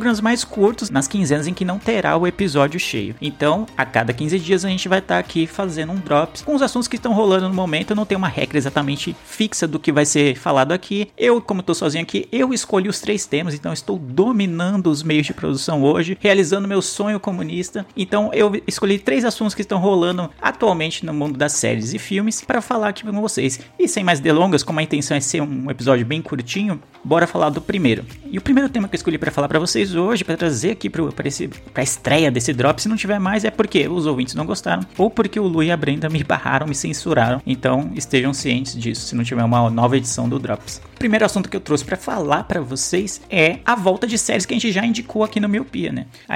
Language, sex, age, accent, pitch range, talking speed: Portuguese, male, 30-49, Brazilian, 145-205 Hz, 240 wpm